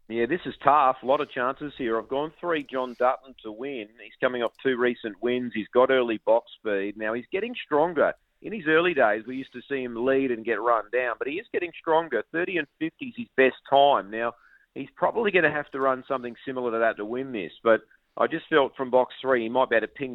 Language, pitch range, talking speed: English, 110-140 Hz, 255 wpm